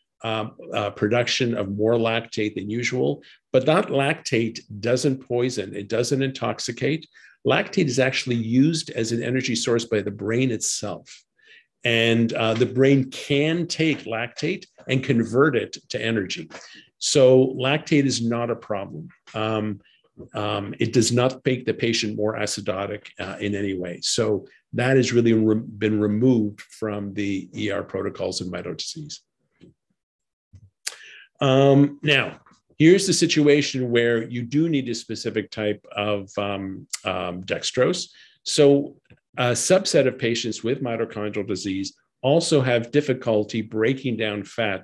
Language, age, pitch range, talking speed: English, 50-69, 105-130 Hz, 140 wpm